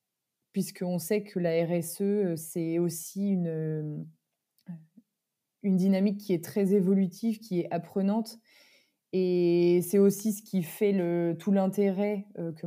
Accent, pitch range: French, 170-205 Hz